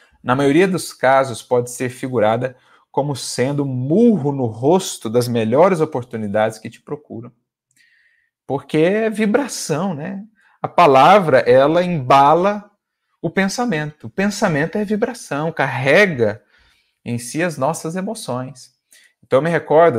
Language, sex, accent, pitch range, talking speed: Portuguese, male, Brazilian, 115-160 Hz, 125 wpm